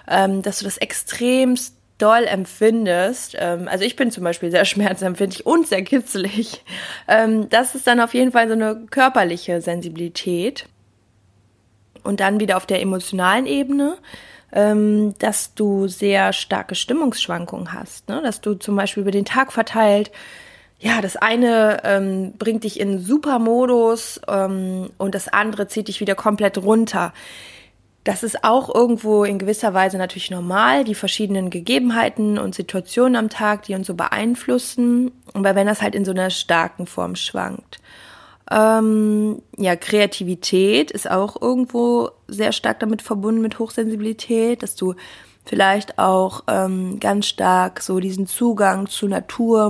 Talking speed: 150 wpm